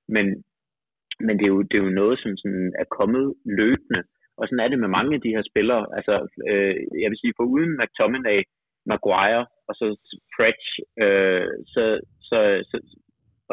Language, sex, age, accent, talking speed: Danish, male, 30-49, native, 180 wpm